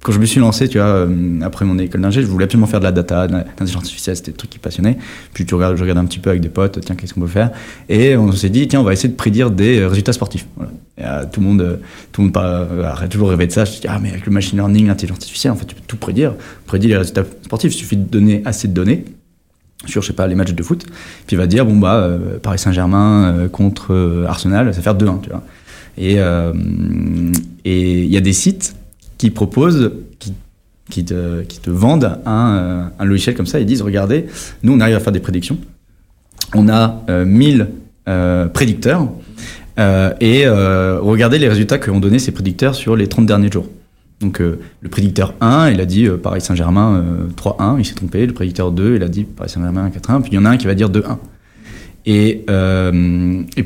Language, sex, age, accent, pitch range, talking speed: French, male, 20-39, French, 90-110 Hz, 235 wpm